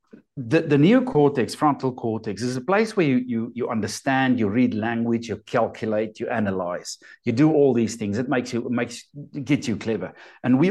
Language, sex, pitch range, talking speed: English, male, 110-170 Hz, 195 wpm